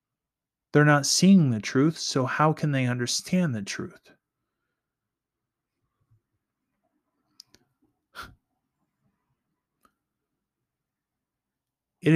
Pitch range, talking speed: 110-135 Hz, 65 wpm